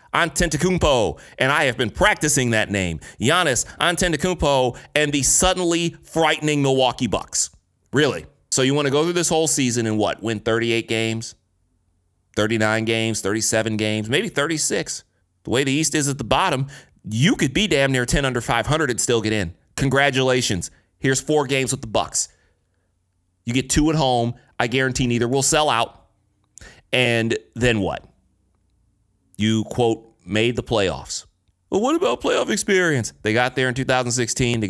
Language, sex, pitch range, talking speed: English, male, 105-145 Hz, 165 wpm